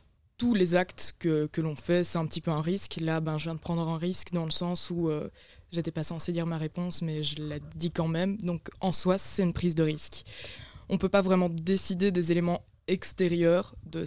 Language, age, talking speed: French, 20-39, 245 wpm